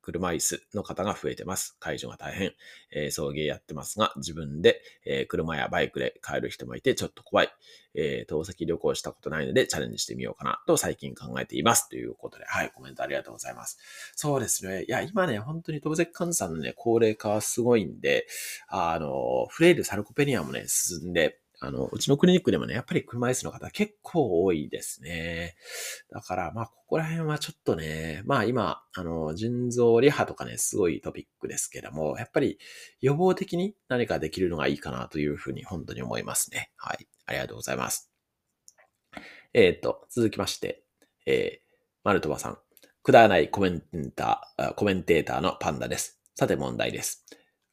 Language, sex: Japanese, male